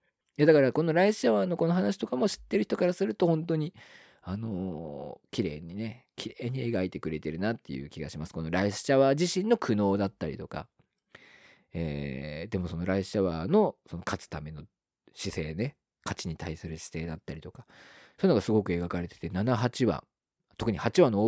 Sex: male